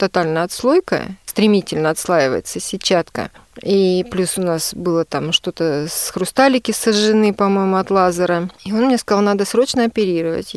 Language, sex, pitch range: Russian, female, 180-235 Hz